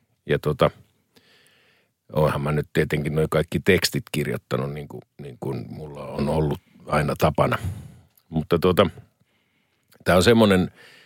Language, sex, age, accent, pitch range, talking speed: Finnish, male, 50-69, native, 75-95 Hz, 125 wpm